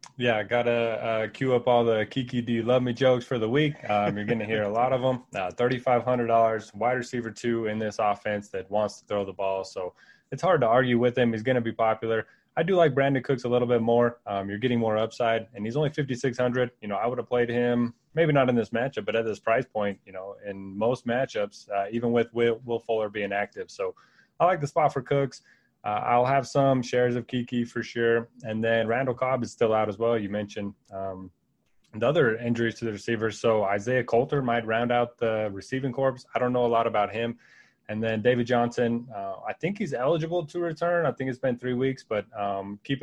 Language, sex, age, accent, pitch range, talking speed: English, male, 20-39, American, 110-125 Hz, 235 wpm